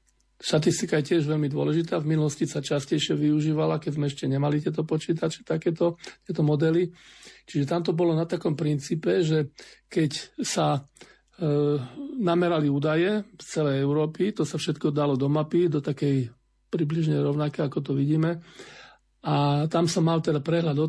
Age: 40-59